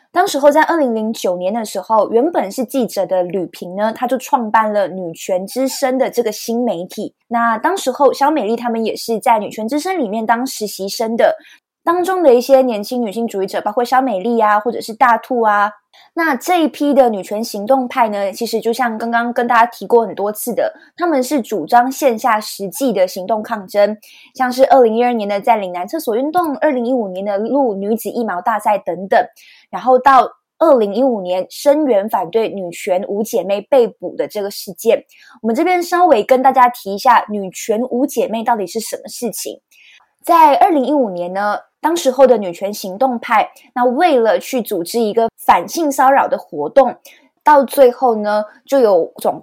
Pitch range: 210-270 Hz